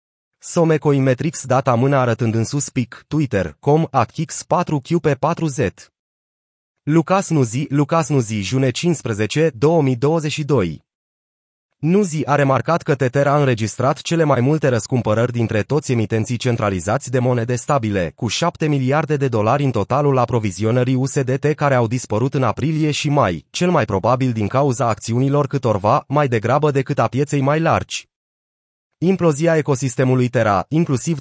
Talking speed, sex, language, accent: 140 wpm, male, Romanian, native